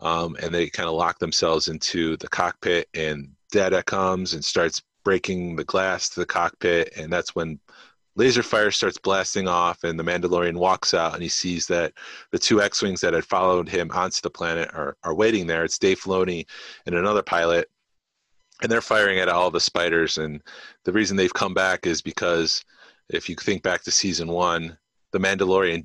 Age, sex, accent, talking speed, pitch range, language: 30-49, male, American, 190 wpm, 80-95 Hz, English